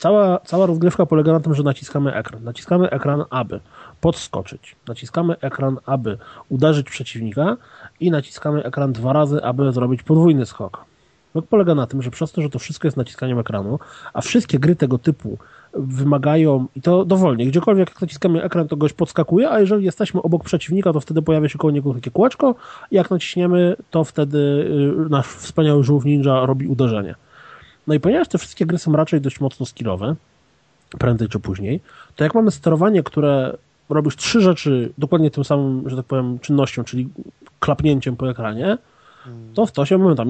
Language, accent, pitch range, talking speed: Polish, native, 130-170 Hz, 175 wpm